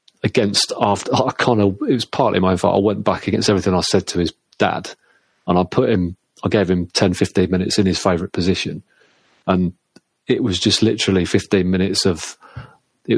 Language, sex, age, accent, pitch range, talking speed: English, male, 30-49, British, 90-105 Hz, 195 wpm